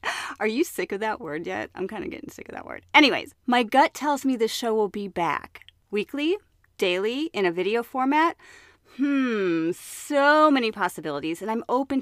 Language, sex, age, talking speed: English, female, 30-49, 190 wpm